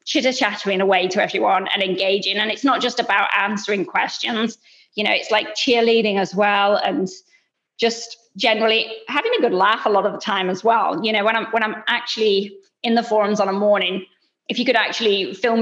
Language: English